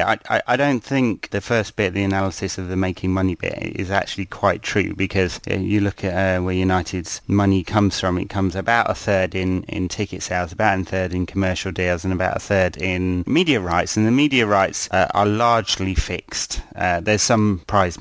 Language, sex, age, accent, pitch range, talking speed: English, male, 30-49, British, 90-105 Hz, 205 wpm